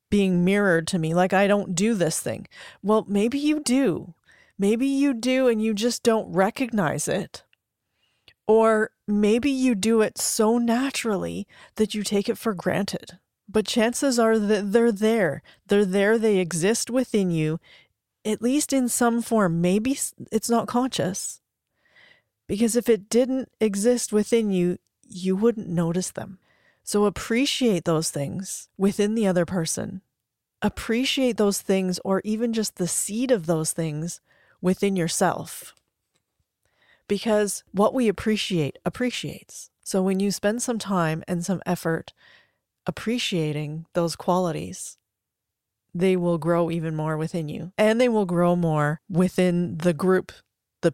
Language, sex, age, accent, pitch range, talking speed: English, female, 30-49, American, 175-225 Hz, 145 wpm